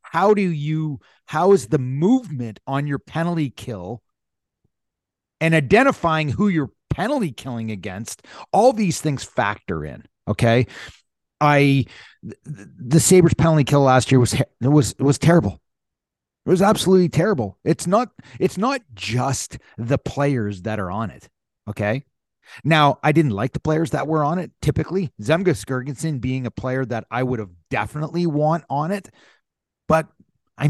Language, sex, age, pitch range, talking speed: English, male, 30-49, 115-155 Hz, 155 wpm